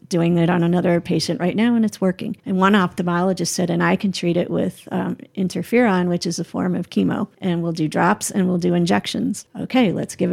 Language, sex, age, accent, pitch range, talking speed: English, female, 40-59, American, 170-200 Hz, 225 wpm